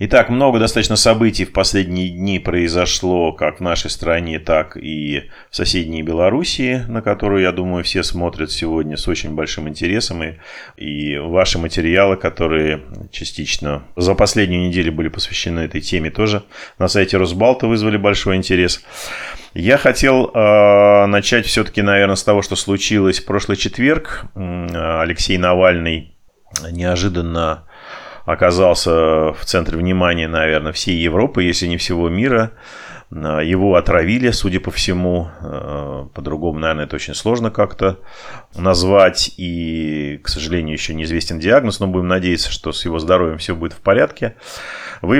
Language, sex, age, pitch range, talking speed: Russian, male, 30-49, 80-100 Hz, 140 wpm